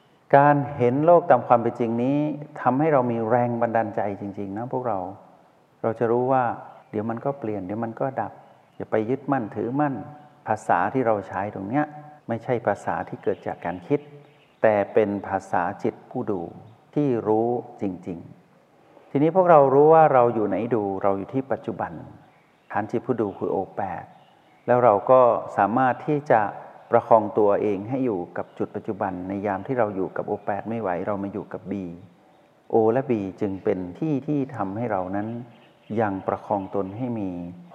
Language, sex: Thai, male